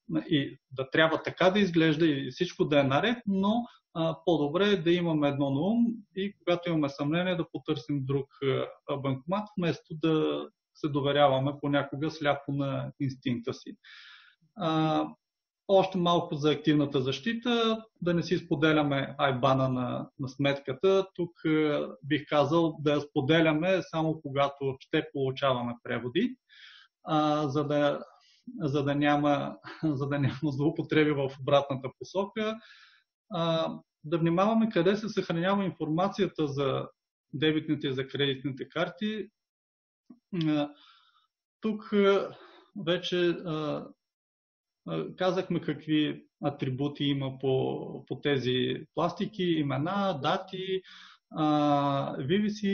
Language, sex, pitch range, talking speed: Bulgarian, male, 145-185 Hz, 115 wpm